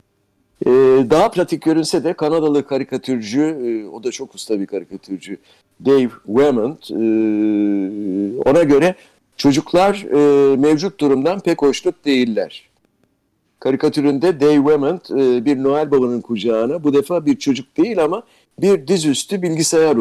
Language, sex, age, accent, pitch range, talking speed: Turkish, male, 60-79, native, 120-165 Hz, 115 wpm